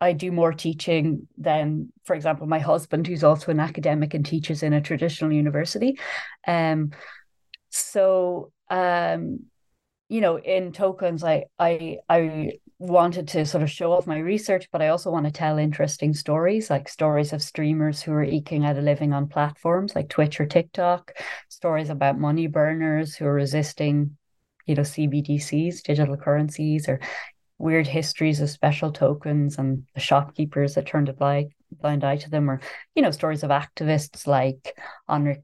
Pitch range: 140-160 Hz